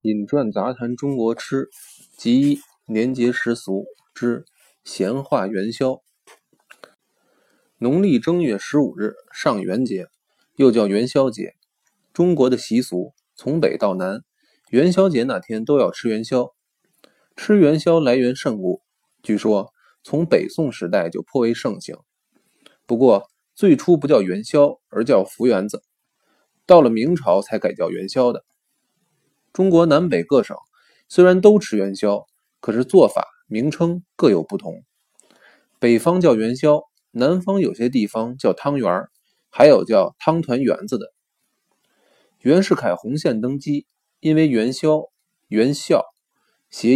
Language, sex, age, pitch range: Chinese, male, 20-39, 120-170 Hz